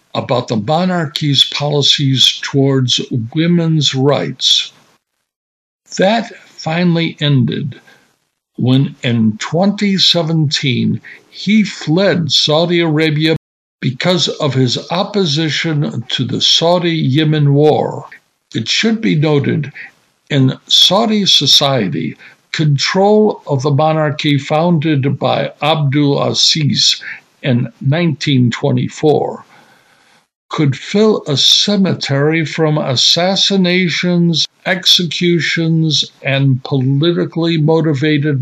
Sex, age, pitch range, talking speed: male, 60-79, 140-175 Hz, 80 wpm